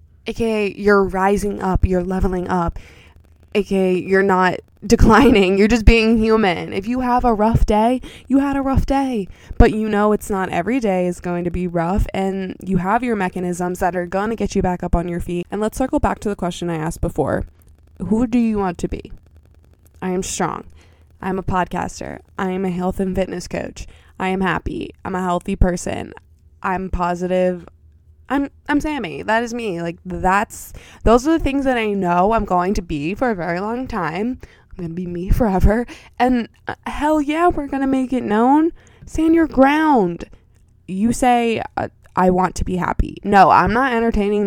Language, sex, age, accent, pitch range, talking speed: English, female, 20-39, American, 180-230 Hz, 195 wpm